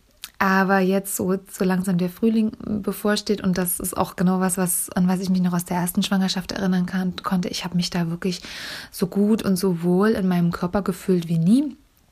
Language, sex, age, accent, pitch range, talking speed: German, female, 20-39, German, 180-200 Hz, 215 wpm